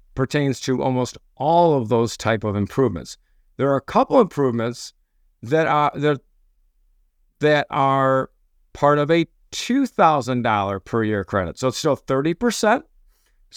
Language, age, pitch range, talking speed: English, 50-69, 115-165 Hz, 130 wpm